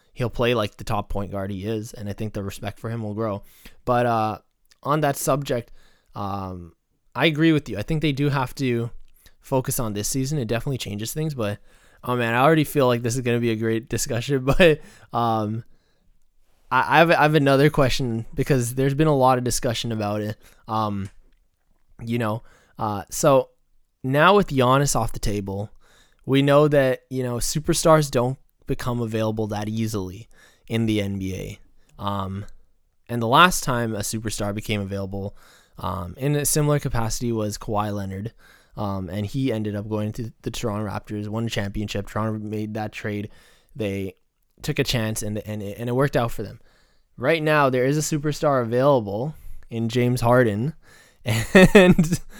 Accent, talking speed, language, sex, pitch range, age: American, 180 wpm, English, male, 105-140 Hz, 20-39